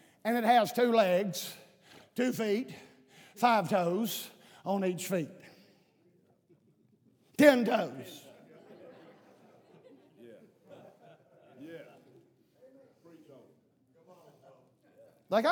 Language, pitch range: English, 210-295 Hz